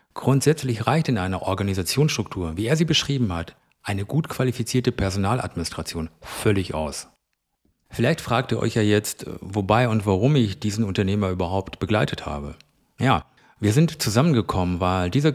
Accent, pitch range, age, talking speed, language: German, 95-120 Hz, 50-69, 145 wpm, German